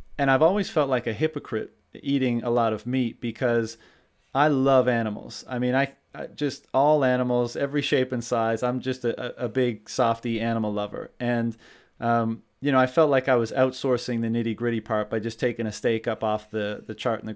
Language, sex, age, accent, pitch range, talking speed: English, male, 30-49, American, 115-130 Hz, 205 wpm